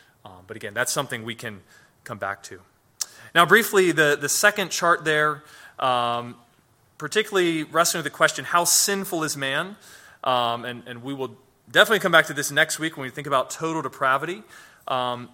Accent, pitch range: American, 130-170 Hz